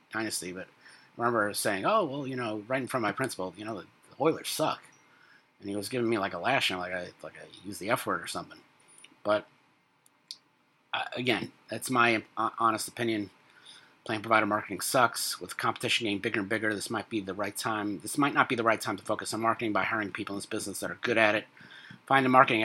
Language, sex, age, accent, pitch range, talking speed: English, male, 30-49, American, 105-130 Hz, 235 wpm